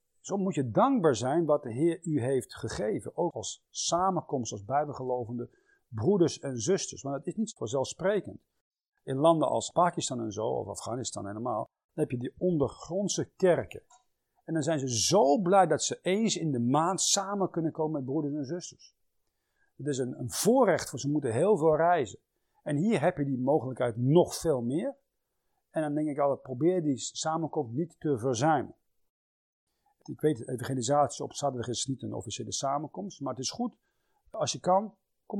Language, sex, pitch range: Dutch, male, 140-180 Hz